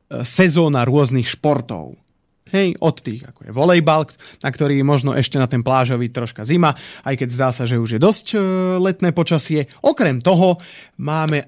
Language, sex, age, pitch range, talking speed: Slovak, male, 30-49, 130-180 Hz, 160 wpm